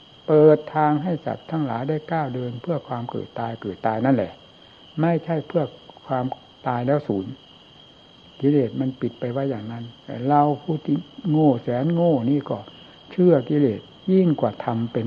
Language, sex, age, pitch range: Thai, male, 60-79, 125-155 Hz